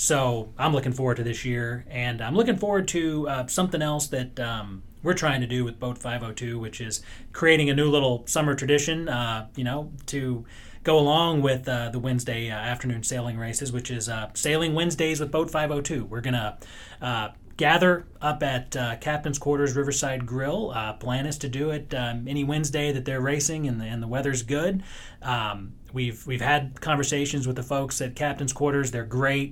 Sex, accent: male, American